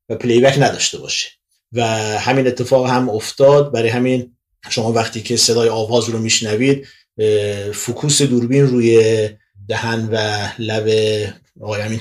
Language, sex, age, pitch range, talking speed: Persian, male, 30-49, 110-130 Hz, 120 wpm